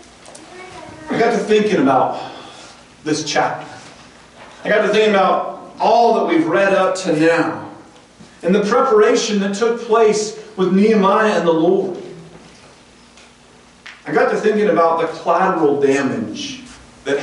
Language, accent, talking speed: English, American, 135 wpm